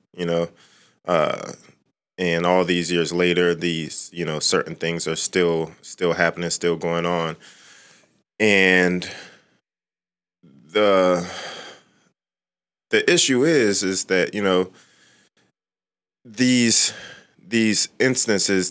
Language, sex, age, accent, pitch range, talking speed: English, male, 20-39, American, 85-95 Hz, 105 wpm